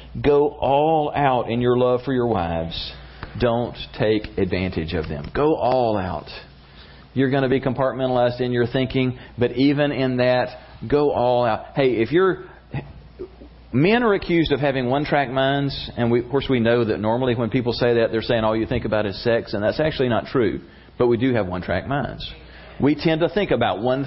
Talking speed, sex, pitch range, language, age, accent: 195 wpm, male, 90-130 Hz, English, 40-59, American